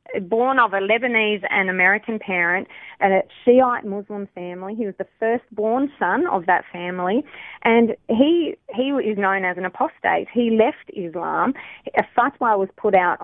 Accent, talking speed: Australian, 170 wpm